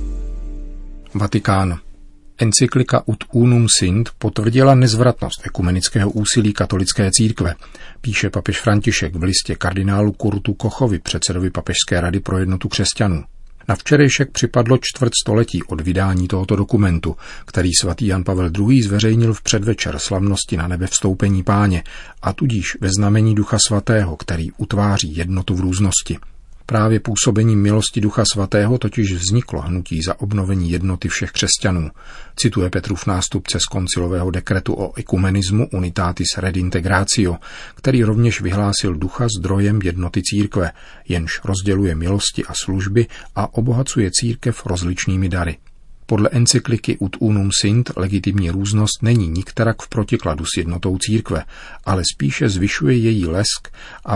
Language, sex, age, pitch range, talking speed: Czech, male, 40-59, 90-110 Hz, 130 wpm